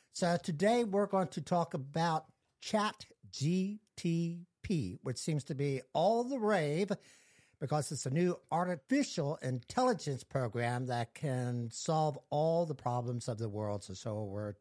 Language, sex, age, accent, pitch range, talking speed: English, male, 60-79, American, 115-170 Hz, 140 wpm